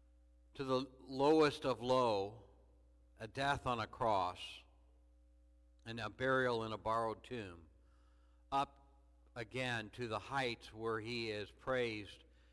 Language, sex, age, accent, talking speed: English, male, 60-79, American, 125 wpm